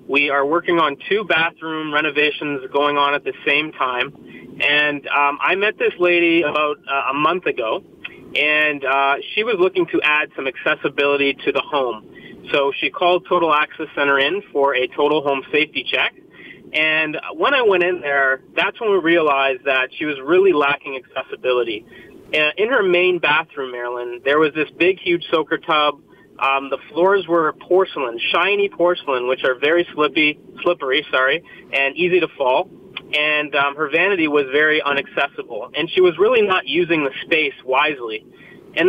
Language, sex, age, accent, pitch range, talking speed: English, male, 30-49, American, 140-195 Hz, 175 wpm